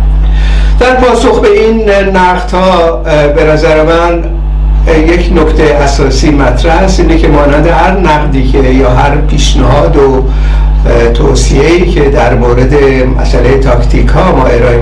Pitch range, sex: 130-160 Hz, male